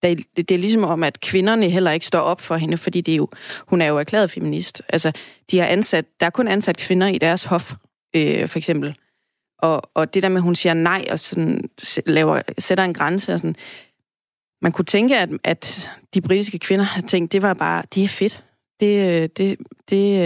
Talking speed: 210 wpm